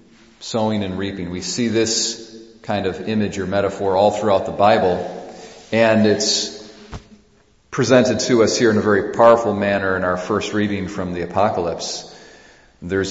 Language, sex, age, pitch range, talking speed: English, male, 40-59, 95-115 Hz, 155 wpm